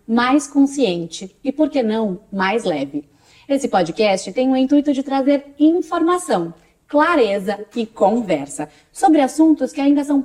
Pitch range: 180-275 Hz